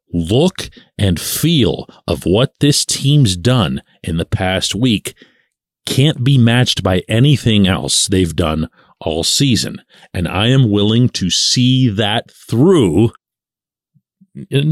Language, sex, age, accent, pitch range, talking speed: English, male, 40-59, American, 90-130 Hz, 125 wpm